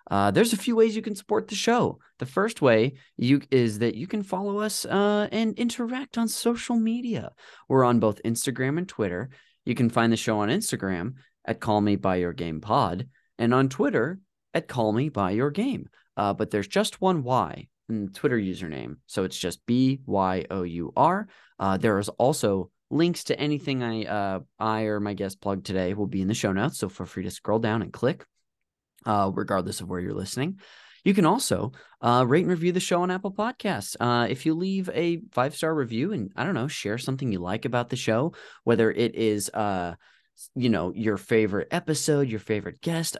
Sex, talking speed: male, 210 wpm